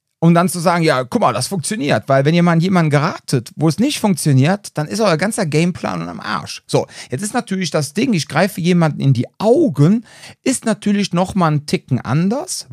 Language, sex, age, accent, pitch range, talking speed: German, male, 40-59, German, 140-185 Hz, 210 wpm